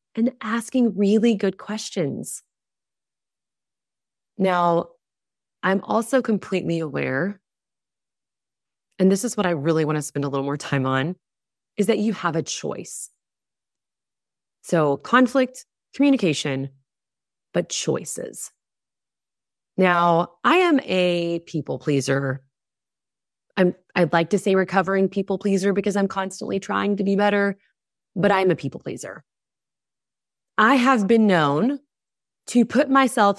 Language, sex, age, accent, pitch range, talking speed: English, female, 20-39, American, 150-205 Hz, 120 wpm